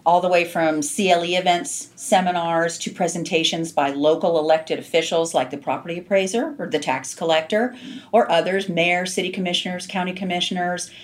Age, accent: 40-59, American